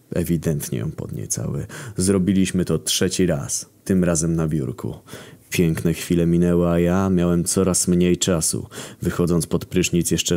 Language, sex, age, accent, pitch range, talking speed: Polish, male, 20-39, native, 80-95 Hz, 140 wpm